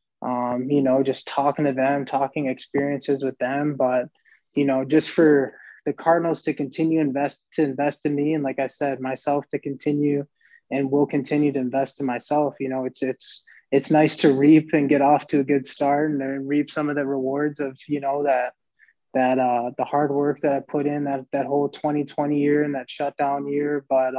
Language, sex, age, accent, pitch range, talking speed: English, male, 20-39, American, 135-150 Hz, 210 wpm